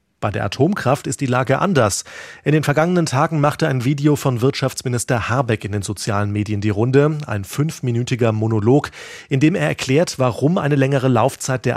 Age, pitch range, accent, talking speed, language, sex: 30-49, 110-140 Hz, German, 180 wpm, German, male